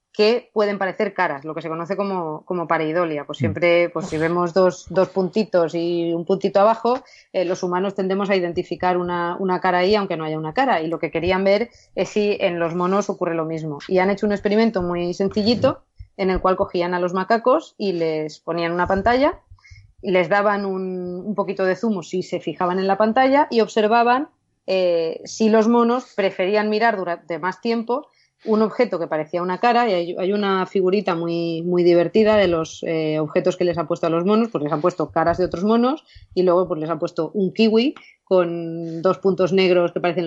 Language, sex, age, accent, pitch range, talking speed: Spanish, female, 20-39, Spanish, 170-210 Hz, 210 wpm